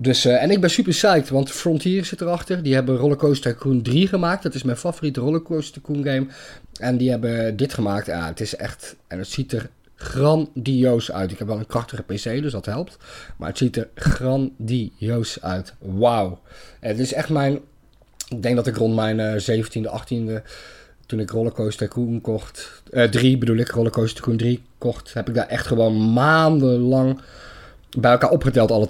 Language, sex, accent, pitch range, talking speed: Dutch, male, Dutch, 110-140 Hz, 190 wpm